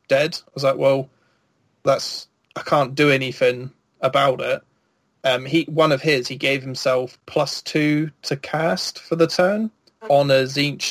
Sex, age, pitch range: male, 20-39, 130-145 Hz